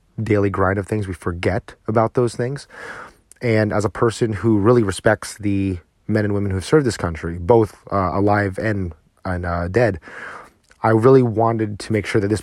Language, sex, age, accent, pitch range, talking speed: English, male, 30-49, American, 100-120 Hz, 195 wpm